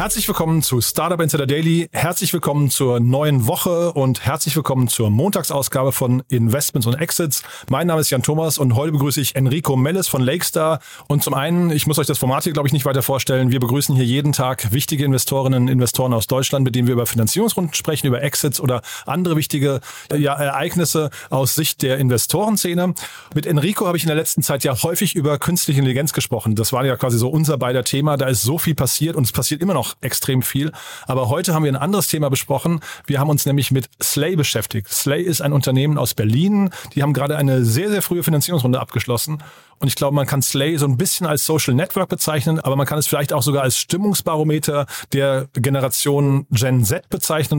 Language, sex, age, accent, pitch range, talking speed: German, male, 30-49, German, 130-160 Hz, 210 wpm